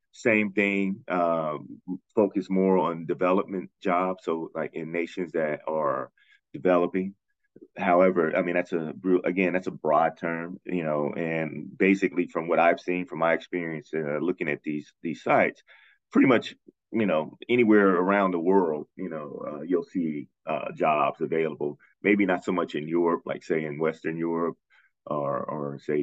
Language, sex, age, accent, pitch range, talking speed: English, male, 30-49, American, 80-95 Hz, 165 wpm